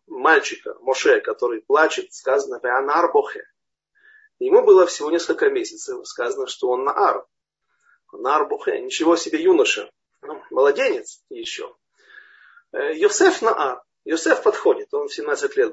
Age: 40-59